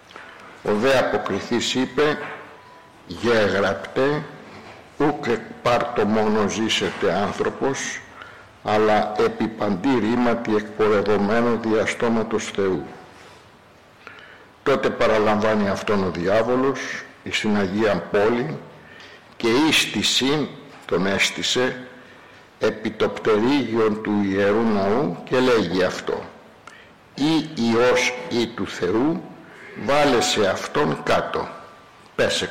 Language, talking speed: Greek, 85 wpm